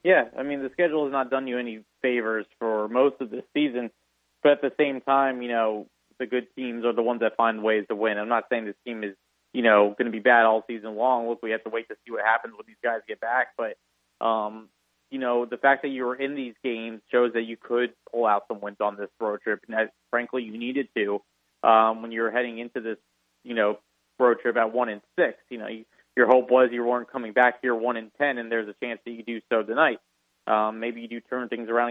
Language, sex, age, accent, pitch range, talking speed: English, male, 30-49, American, 110-130 Hz, 250 wpm